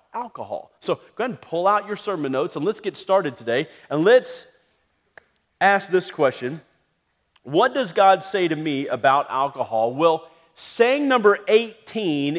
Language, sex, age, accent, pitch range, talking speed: English, male, 40-59, American, 145-200 Hz, 155 wpm